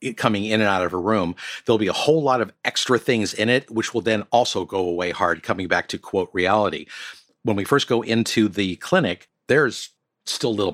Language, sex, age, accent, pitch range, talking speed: English, male, 50-69, American, 95-115 Hz, 225 wpm